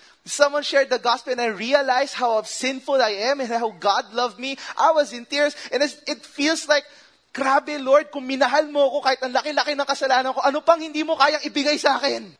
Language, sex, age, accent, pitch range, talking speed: English, male, 20-39, Filipino, 215-300 Hz, 210 wpm